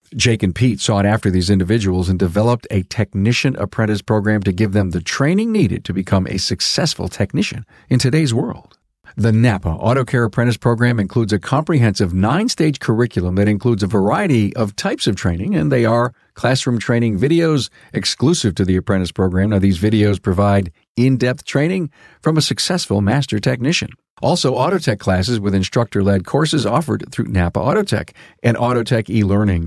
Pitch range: 100-125 Hz